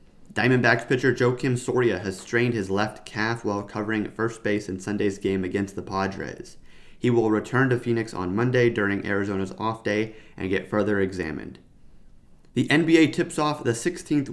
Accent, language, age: American, English, 30-49